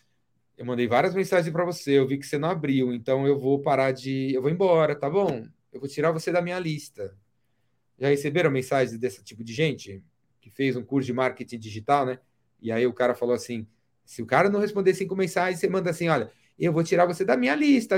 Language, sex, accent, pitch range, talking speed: Portuguese, male, Brazilian, 135-190 Hz, 225 wpm